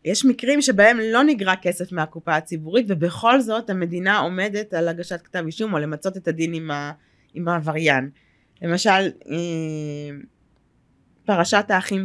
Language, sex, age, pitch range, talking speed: Hebrew, female, 20-39, 170-210 Hz, 125 wpm